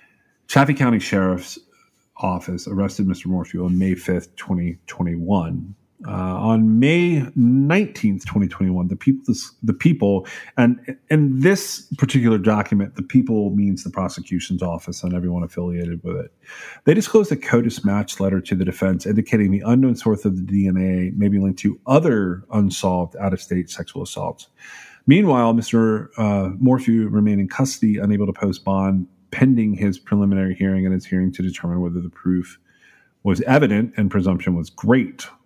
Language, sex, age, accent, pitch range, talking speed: English, male, 40-59, American, 95-120 Hz, 150 wpm